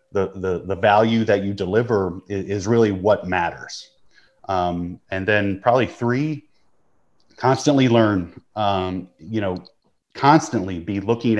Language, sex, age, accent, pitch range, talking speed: English, male, 30-49, American, 95-115 Hz, 130 wpm